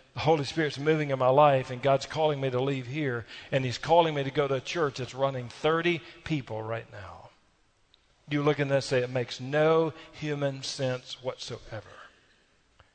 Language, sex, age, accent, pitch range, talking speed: English, male, 40-59, American, 125-155 Hz, 190 wpm